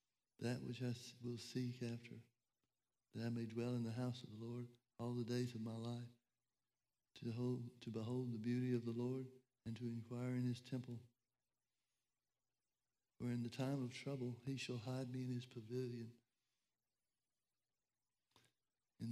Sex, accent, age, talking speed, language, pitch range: male, American, 60-79, 155 wpm, English, 120-125 Hz